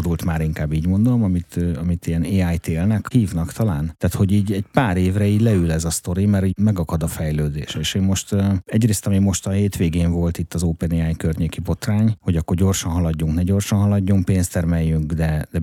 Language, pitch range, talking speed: Hungarian, 80-100 Hz, 205 wpm